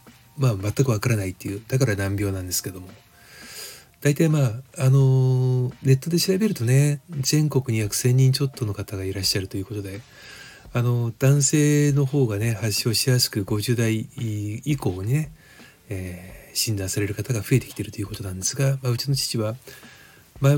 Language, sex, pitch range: Japanese, male, 105-135 Hz